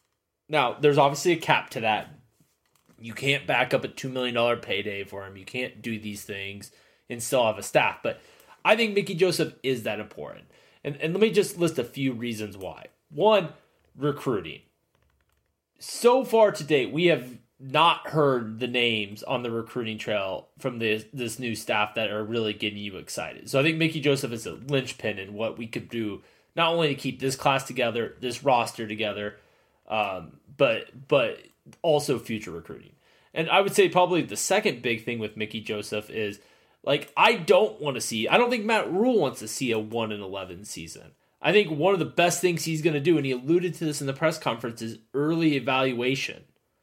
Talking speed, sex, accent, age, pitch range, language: 195 wpm, male, American, 20-39, 115-160 Hz, English